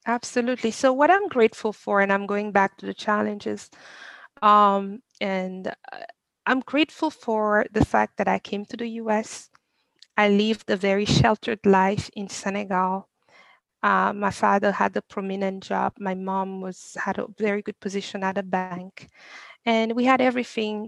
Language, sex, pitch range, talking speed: English, female, 200-240 Hz, 160 wpm